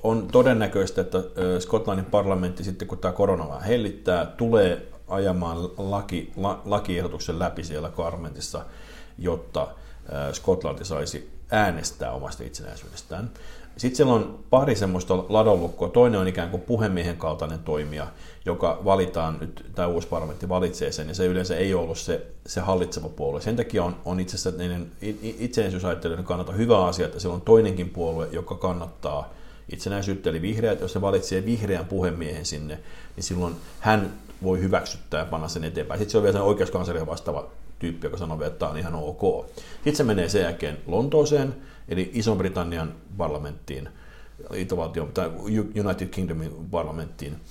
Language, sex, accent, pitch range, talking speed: Finnish, male, native, 85-100 Hz, 150 wpm